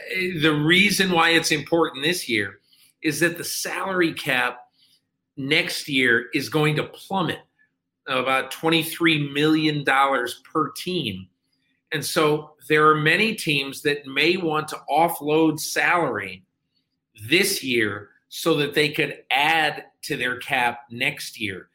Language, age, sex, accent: English, 40-59, male, American